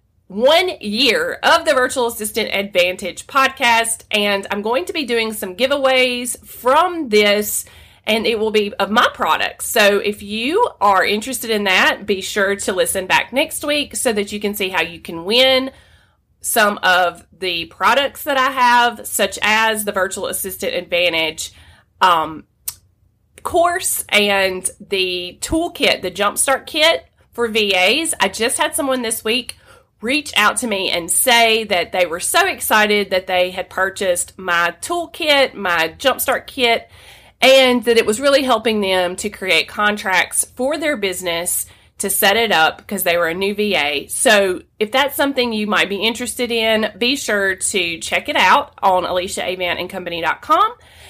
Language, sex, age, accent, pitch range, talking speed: English, female, 30-49, American, 185-255 Hz, 160 wpm